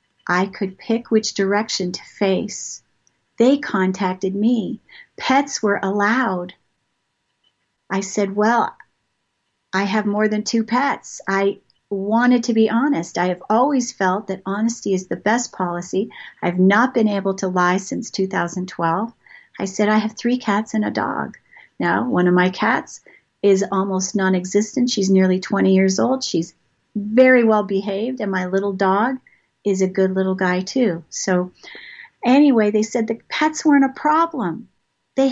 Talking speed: 155 wpm